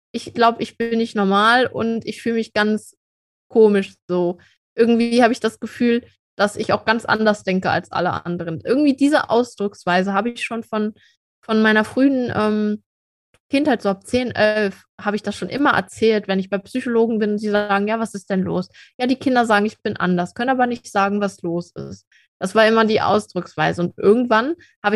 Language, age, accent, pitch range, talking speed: German, 20-39, German, 195-230 Hz, 205 wpm